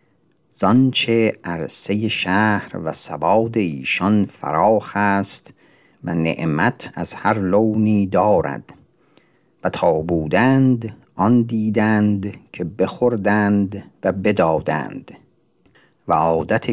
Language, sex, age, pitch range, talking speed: Persian, male, 50-69, 90-115 Hz, 90 wpm